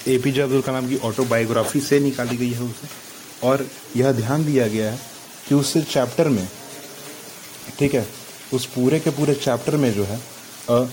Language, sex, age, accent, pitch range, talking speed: English, male, 30-49, Indian, 110-130 Hz, 170 wpm